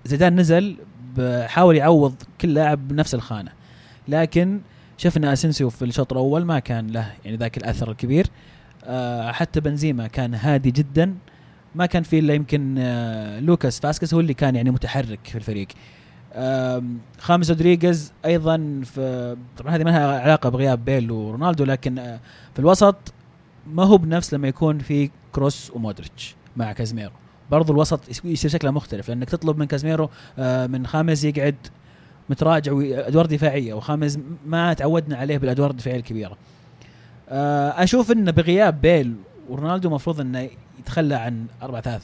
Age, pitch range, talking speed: 30-49, 125-160 Hz, 145 wpm